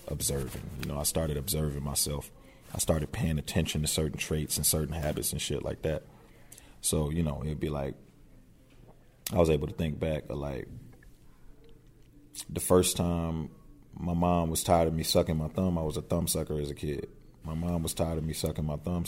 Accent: American